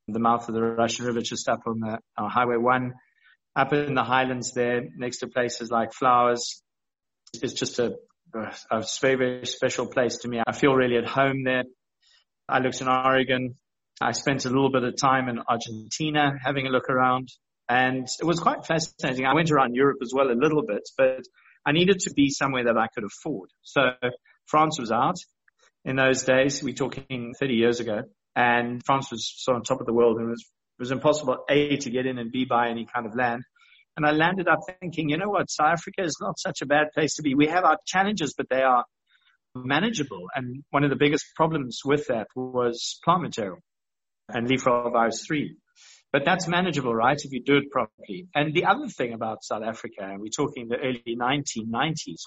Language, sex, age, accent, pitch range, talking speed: English, male, 30-49, British, 120-150 Hz, 210 wpm